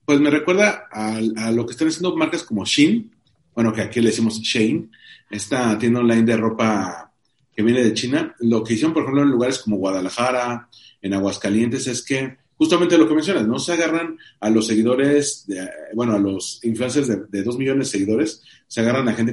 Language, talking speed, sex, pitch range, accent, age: Spanish, 200 wpm, male, 110-140 Hz, Mexican, 40-59